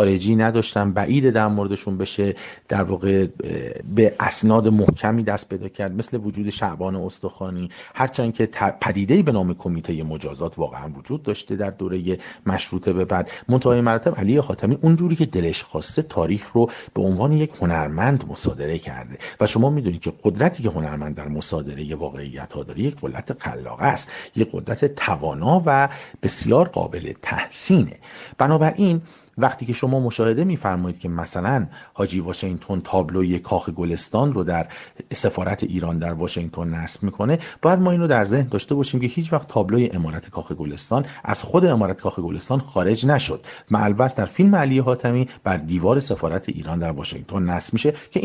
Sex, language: male, English